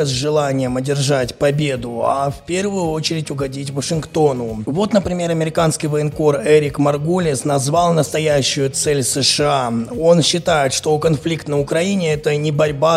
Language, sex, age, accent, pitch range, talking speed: Russian, male, 20-39, native, 135-160 Hz, 135 wpm